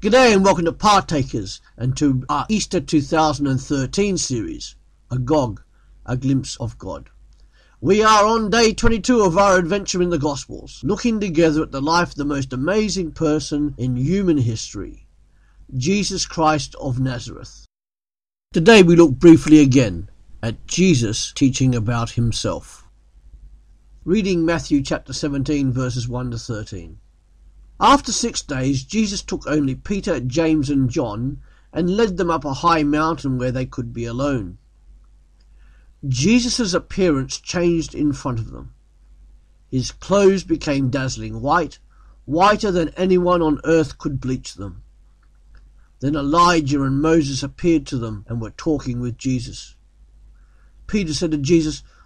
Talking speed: 140 wpm